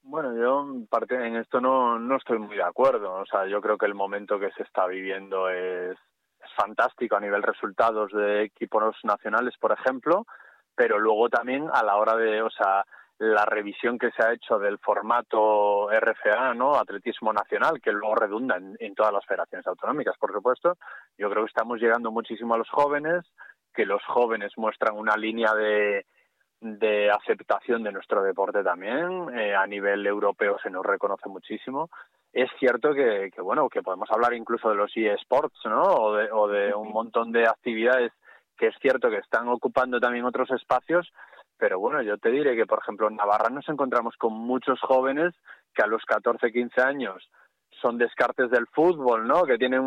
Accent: Spanish